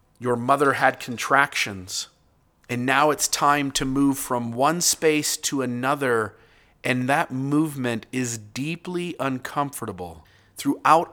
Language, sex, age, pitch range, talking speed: English, male, 40-59, 105-140 Hz, 120 wpm